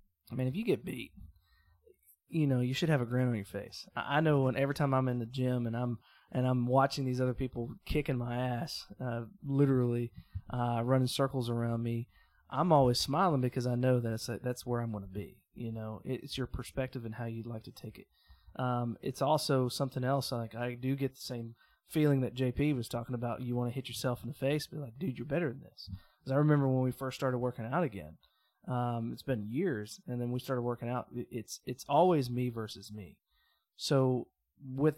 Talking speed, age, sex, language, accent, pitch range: 220 wpm, 20-39, male, English, American, 120-135 Hz